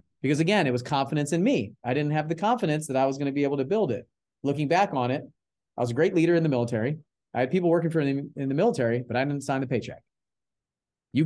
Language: English